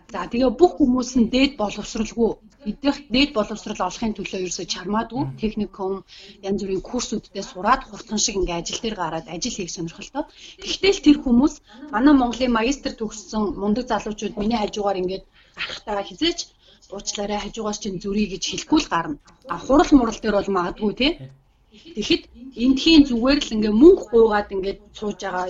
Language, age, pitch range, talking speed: Russian, 30-49, 195-255 Hz, 130 wpm